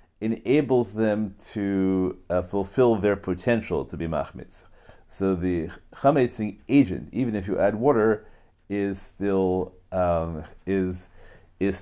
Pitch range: 85-100 Hz